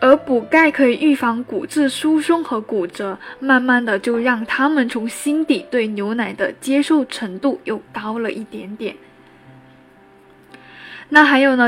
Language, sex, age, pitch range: Chinese, female, 10-29, 225-285 Hz